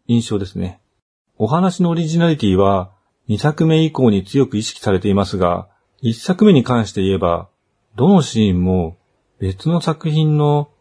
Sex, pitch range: male, 95-150 Hz